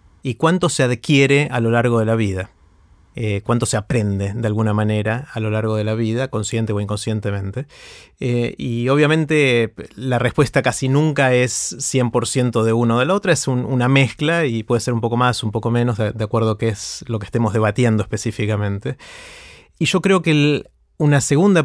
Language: Spanish